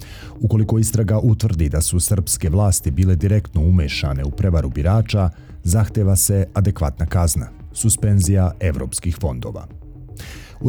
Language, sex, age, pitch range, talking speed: Croatian, male, 40-59, 85-105 Hz, 125 wpm